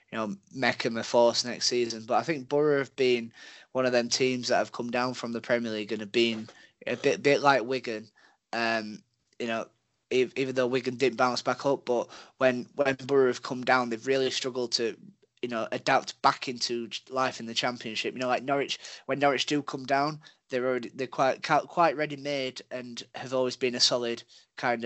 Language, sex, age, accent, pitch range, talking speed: English, male, 20-39, British, 115-130 Hz, 210 wpm